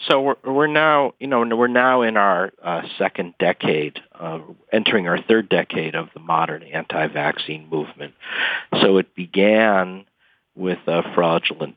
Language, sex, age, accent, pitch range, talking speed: English, male, 50-69, American, 80-95 Hz, 150 wpm